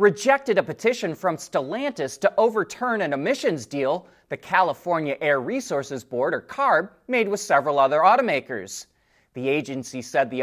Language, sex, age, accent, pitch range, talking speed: English, male, 30-49, American, 130-210 Hz, 150 wpm